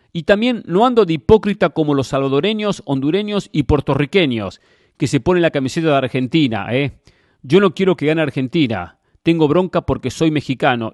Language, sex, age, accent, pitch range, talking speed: English, male, 40-59, Argentinian, 130-180 Hz, 170 wpm